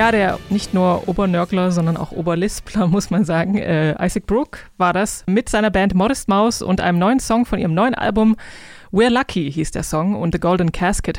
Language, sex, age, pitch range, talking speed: German, female, 20-39, 180-220 Hz, 205 wpm